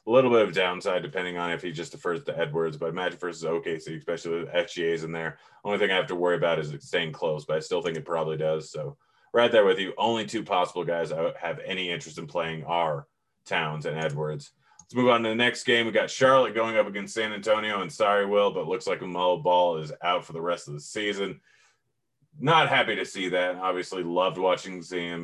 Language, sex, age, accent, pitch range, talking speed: English, male, 30-49, American, 85-115 Hz, 240 wpm